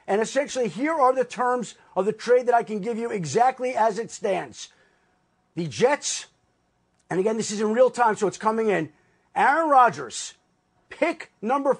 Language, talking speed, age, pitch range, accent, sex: English, 180 wpm, 40-59, 220-275 Hz, American, male